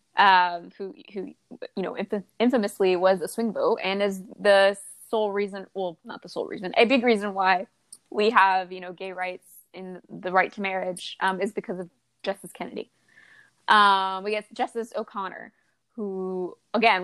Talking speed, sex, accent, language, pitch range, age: 175 wpm, female, American, English, 190-225 Hz, 20-39